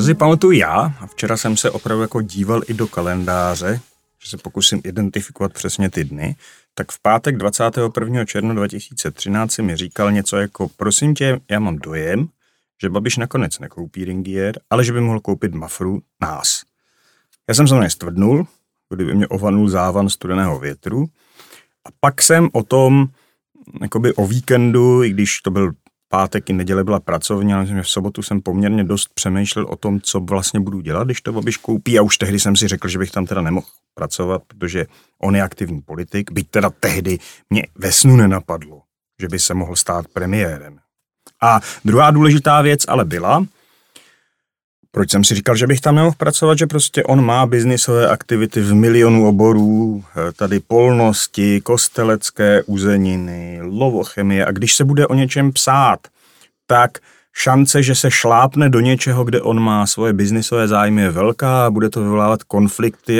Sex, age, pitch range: male, 40-59, 100-120 Hz